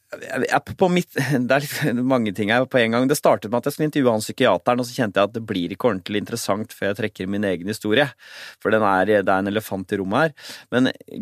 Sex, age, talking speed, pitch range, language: male, 30-49, 255 wpm, 100-125 Hz, English